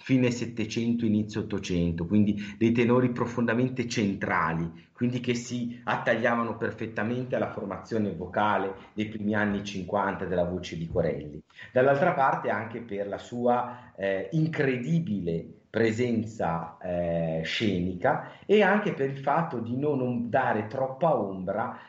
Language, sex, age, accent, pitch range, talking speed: Italian, male, 40-59, native, 100-125 Hz, 125 wpm